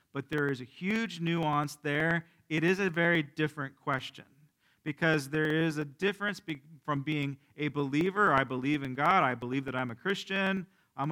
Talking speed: 180 wpm